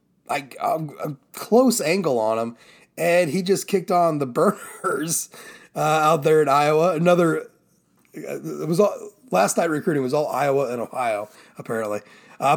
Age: 30-49